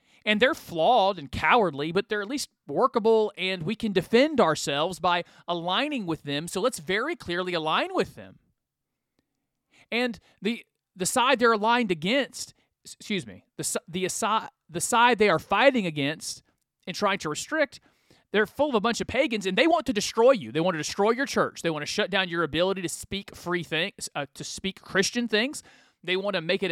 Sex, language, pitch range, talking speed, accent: male, English, 170-230 Hz, 195 wpm, American